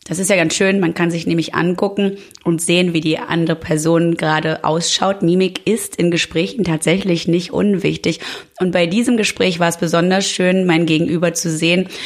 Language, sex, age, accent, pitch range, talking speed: English, female, 30-49, German, 165-190 Hz, 185 wpm